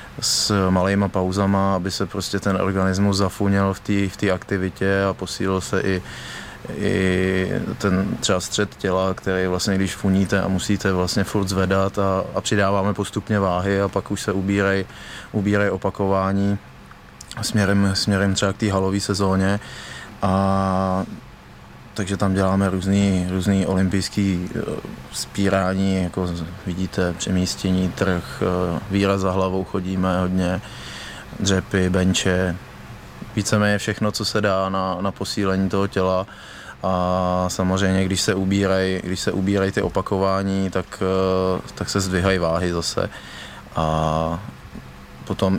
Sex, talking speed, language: male, 125 wpm, Czech